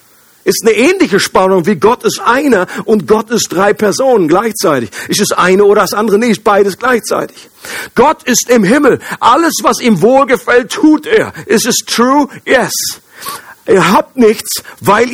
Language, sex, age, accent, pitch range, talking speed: German, male, 50-69, German, 205-250 Hz, 165 wpm